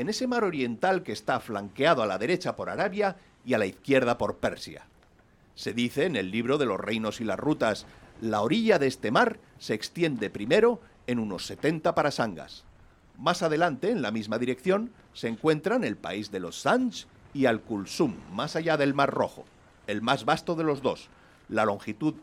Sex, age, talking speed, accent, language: male, 50-69, 185 wpm, Spanish, English